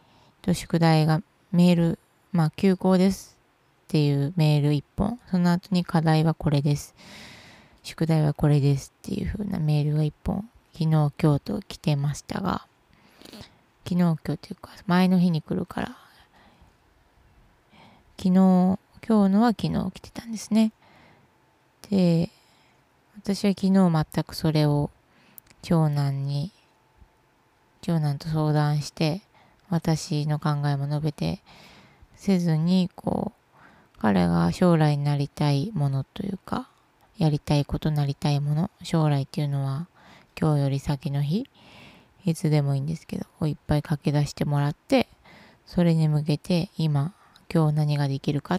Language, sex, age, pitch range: Japanese, female, 20-39, 145-180 Hz